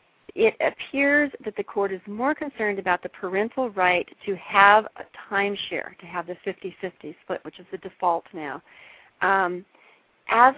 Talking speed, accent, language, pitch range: 160 wpm, American, English, 180-215 Hz